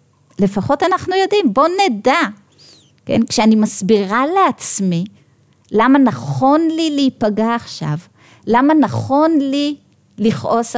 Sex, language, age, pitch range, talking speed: female, Hebrew, 30-49, 200-280 Hz, 100 wpm